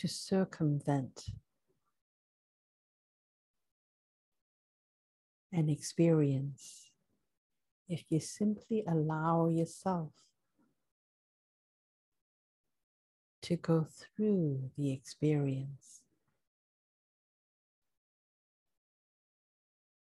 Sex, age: female, 60-79